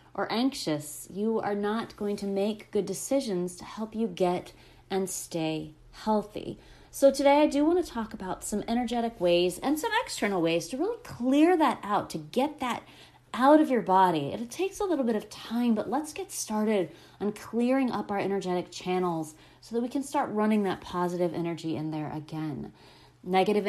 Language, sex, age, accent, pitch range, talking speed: English, female, 30-49, American, 175-235 Hz, 190 wpm